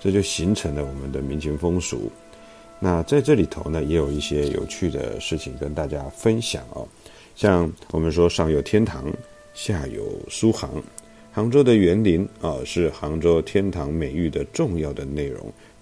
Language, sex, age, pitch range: Chinese, male, 50-69, 75-105 Hz